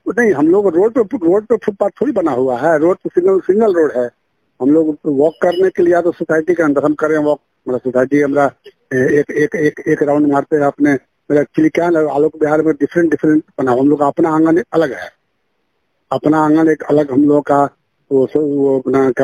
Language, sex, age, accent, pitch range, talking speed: English, male, 50-69, Indian, 130-155 Hz, 195 wpm